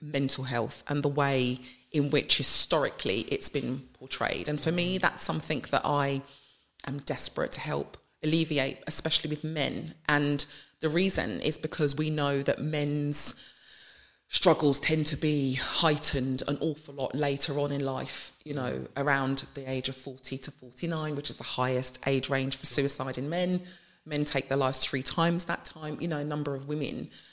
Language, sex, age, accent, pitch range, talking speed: English, female, 30-49, British, 140-175 Hz, 175 wpm